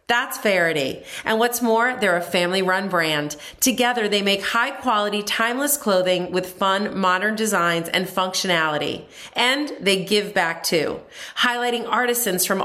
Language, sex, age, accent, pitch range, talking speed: English, female, 40-59, American, 180-235 Hz, 140 wpm